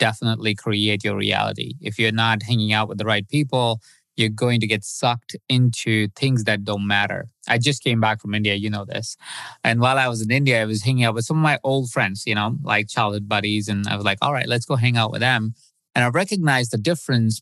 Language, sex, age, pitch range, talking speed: English, male, 20-39, 110-125 Hz, 240 wpm